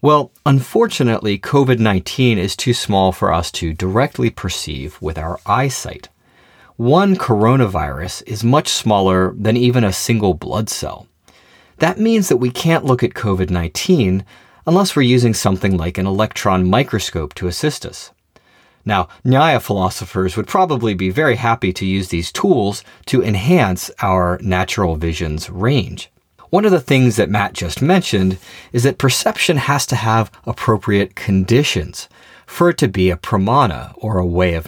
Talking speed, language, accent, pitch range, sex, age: 150 wpm, English, American, 95-135 Hz, male, 30-49